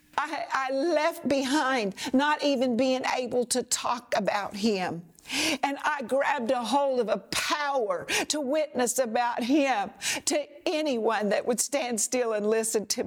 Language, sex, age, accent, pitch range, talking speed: English, female, 60-79, American, 220-300 Hz, 150 wpm